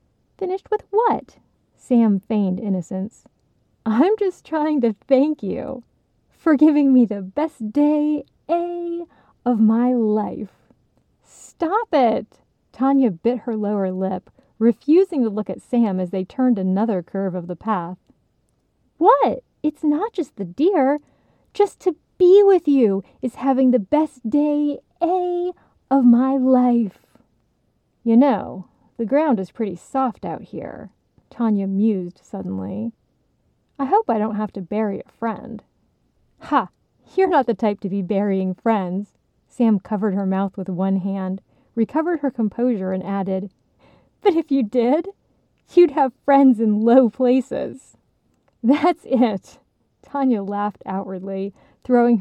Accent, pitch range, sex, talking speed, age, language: American, 200-290 Hz, female, 140 wpm, 30-49, English